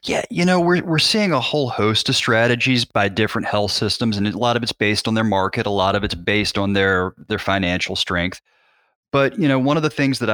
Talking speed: 245 wpm